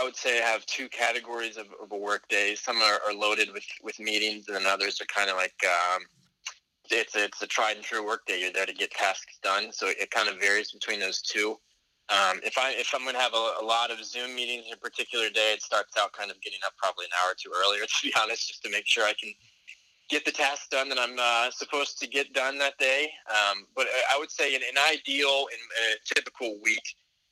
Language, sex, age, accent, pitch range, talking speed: English, male, 20-39, American, 105-130 Hz, 255 wpm